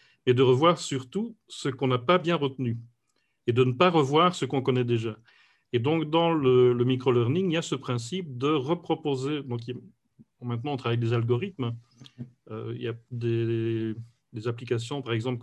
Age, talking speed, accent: 40-59, 190 wpm, French